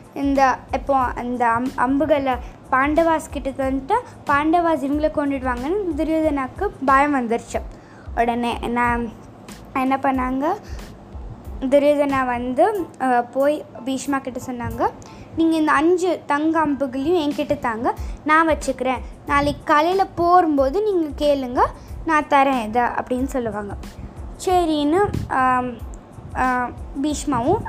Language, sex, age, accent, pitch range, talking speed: Tamil, female, 20-39, native, 260-315 Hz, 95 wpm